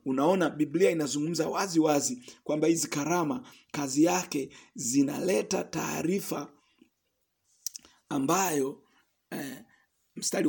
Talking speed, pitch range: 85 wpm, 160-245 Hz